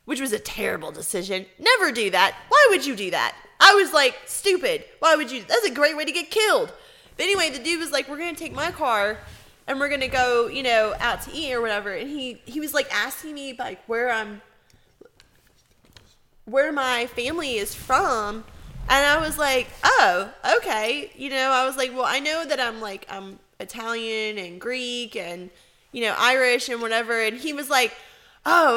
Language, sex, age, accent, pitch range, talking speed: English, female, 10-29, American, 225-310 Hz, 205 wpm